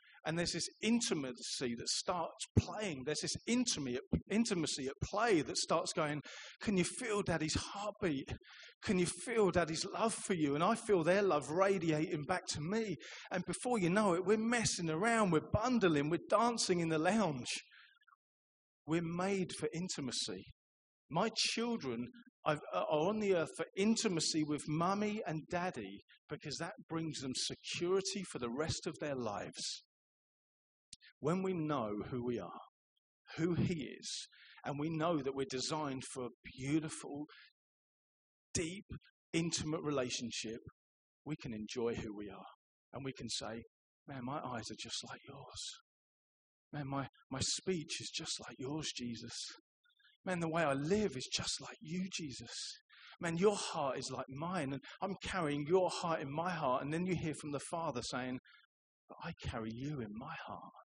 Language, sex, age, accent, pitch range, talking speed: English, male, 40-59, British, 135-185 Hz, 160 wpm